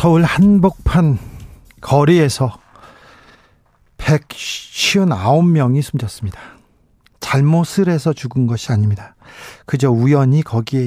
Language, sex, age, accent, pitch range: Korean, male, 40-59, native, 125-160 Hz